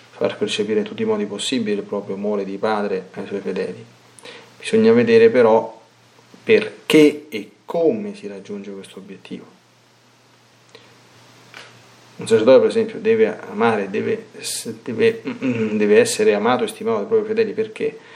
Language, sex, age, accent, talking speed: Italian, male, 30-49, native, 140 wpm